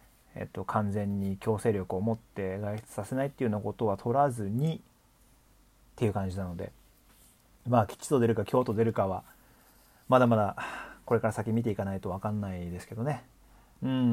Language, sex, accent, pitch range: Japanese, male, native, 105-125 Hz